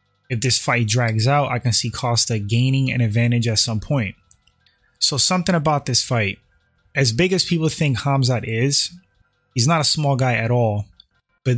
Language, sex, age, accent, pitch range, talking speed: English, male, 20-39, American, 120-140 Hz, 180 wpm